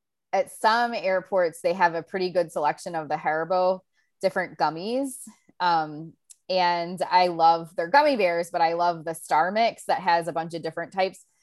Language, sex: English, female